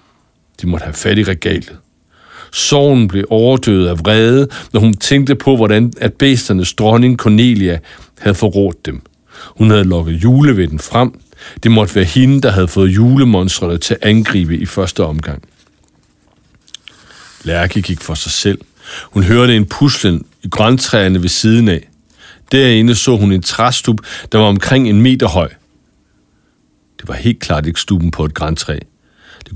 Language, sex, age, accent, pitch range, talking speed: English, male, 60-79, Danish, 85-115 Hz, 155 wpm